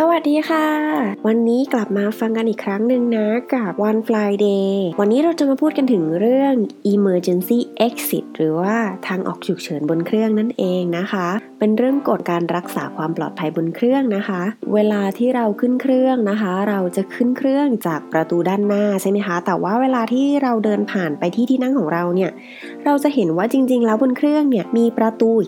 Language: English